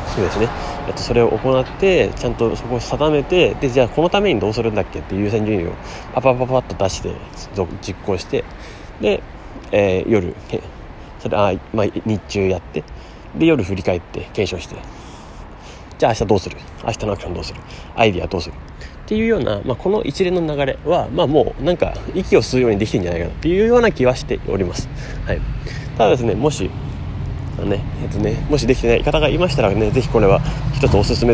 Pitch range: 95-135 Hz